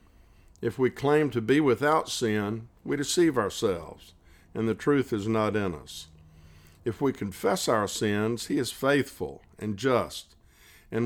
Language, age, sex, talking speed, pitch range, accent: English, 50-69, male, 150 wpm, 95-125 Hz, American